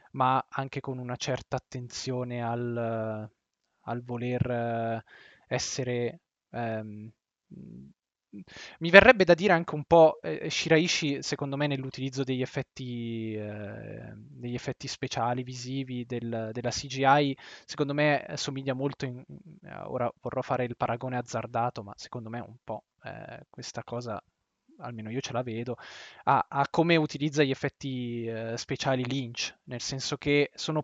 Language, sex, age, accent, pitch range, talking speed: Italian, male, 20-39, native, 120-145 Hz, 135 wpm